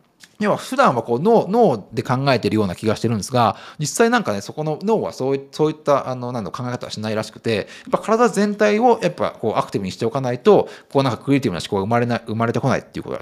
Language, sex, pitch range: Japanese, male, 110-180 Hz